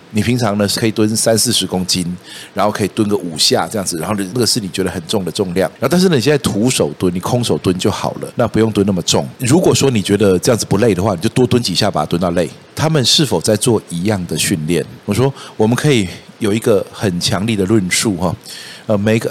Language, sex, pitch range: Chinese, male, 95-125 Hz